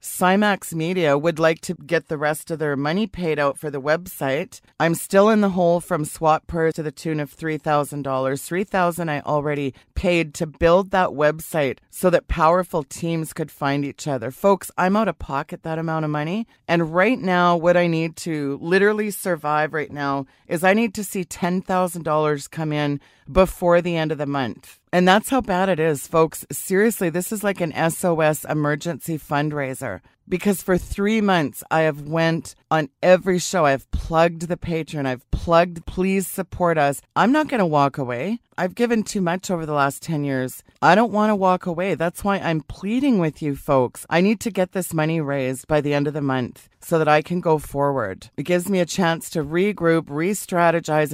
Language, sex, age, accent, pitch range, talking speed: English, female, 30-49, American, 150-180 Hz, 205 wpm